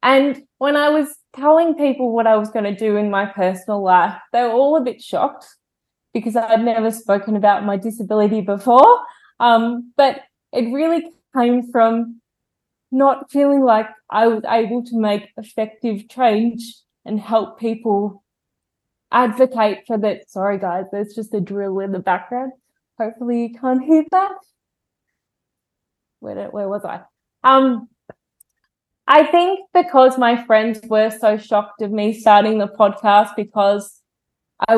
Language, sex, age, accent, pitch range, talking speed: English, female, 20-39, Australian, 210-255 Hz, 150 wpm